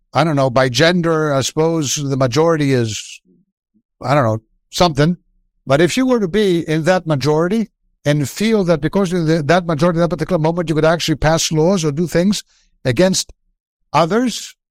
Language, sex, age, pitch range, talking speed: English, male, 60-79, 145-195 Hz, 180 wpm